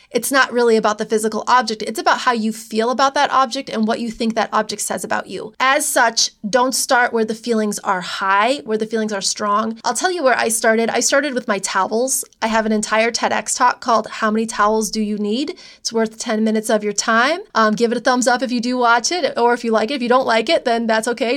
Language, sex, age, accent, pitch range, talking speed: English, female, 20-39, American, 220-270 Hz, 260 wpm